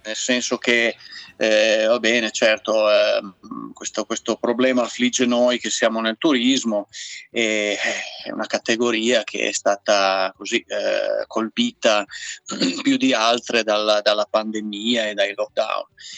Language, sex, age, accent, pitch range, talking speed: Italian, male, 30-49, native, 115-130 Hz, 135 wpm